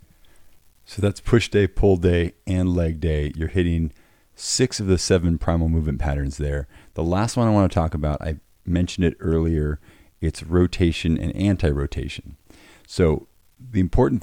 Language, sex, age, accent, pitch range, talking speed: English, male, 40-59, American, 75-90 Hz, 160 wpm